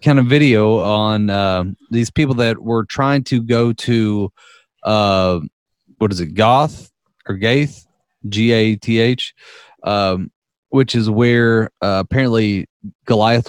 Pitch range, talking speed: 100-120 Hz, 125 wpm